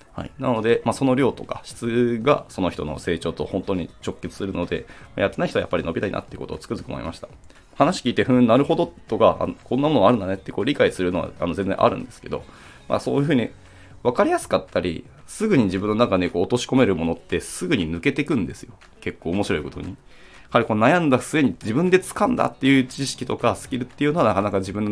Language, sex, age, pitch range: Japanese, male, 20-39, 85-125 Hz